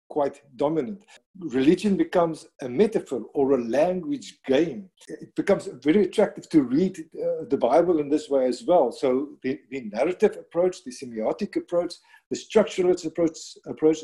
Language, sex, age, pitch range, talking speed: English, male, 50-69, 135-210 Hz, 155 wpm